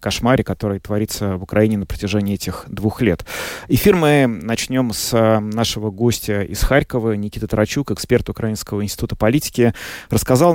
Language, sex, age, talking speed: Russian, male, 30-49, 140 wpm